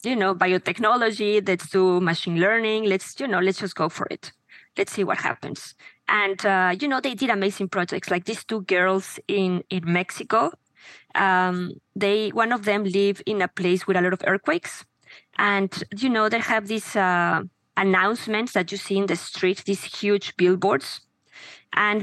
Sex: female